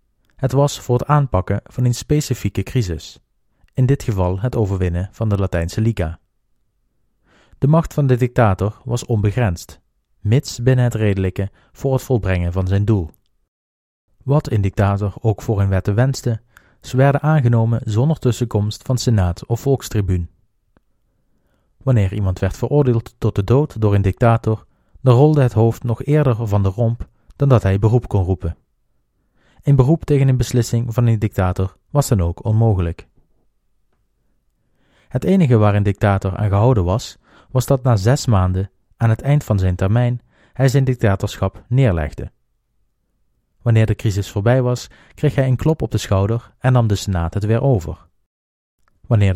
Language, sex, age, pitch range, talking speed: Dutch, male, 40-59, 95-125 Hz, 160 wpm